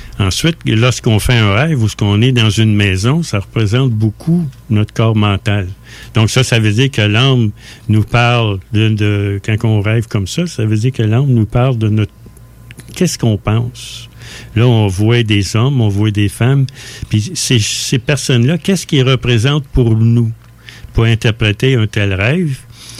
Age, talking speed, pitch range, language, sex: 60-79, 175 wpm, 110-130 Hz, French, male